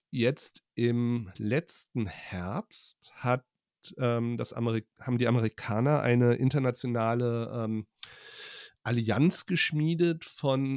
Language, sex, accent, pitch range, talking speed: German, male, German, 115-150 Hz, 80 wpm